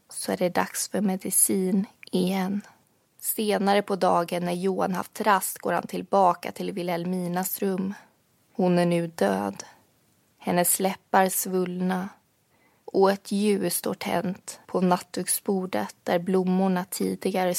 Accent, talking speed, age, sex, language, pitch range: native, 125 wpm, 20-39, female, Swedish, 175-200 Hz